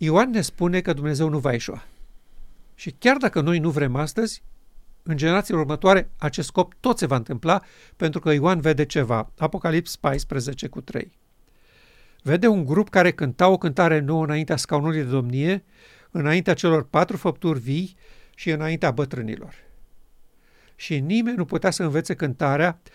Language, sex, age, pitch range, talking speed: Romanian, male, 50-69, 140-180 Hz, 155 wpm